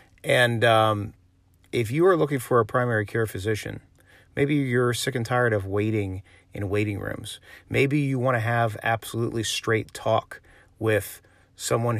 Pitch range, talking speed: 100-130 Hz, 155 wpm